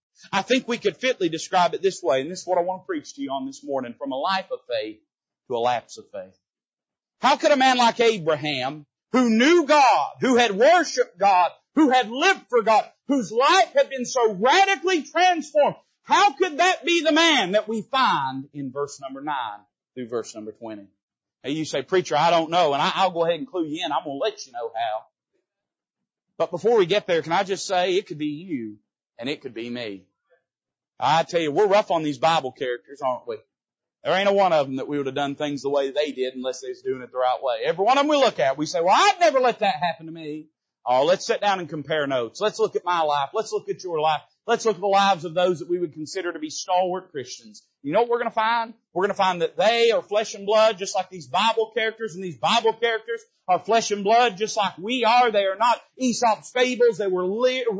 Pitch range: 165-255 Hz